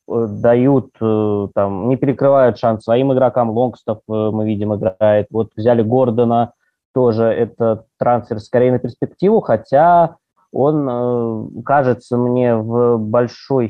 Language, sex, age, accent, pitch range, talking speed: Russian, male, 20-39, native, 110-140 Hz, 115 wpm